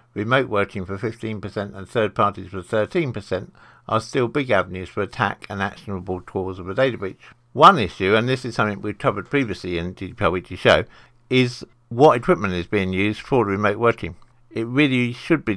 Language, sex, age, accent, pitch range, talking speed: English, male, 60-79, British, 95-120 Hz, 185 wpm